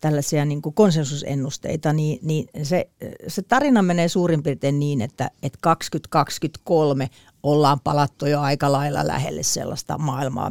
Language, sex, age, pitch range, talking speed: Finnish, female, 40-59, 140-160 Hz, 125 wpm